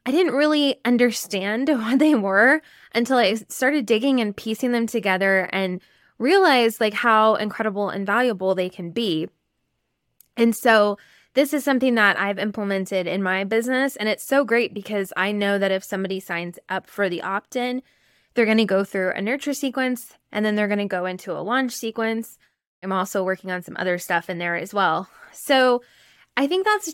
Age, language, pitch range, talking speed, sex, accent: 10-29, English, 195-240 Hz, 185 wpm, female, American